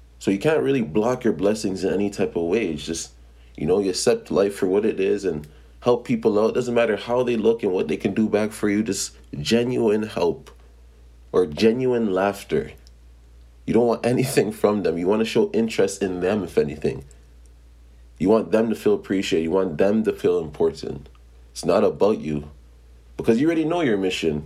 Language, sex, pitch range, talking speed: English, male, 70-115 Hz, 205 wpm